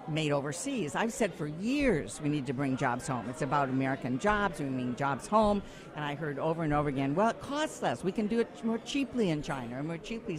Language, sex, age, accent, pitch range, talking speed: English, female, 60-79, American, 145-180 Hz, 245 wpm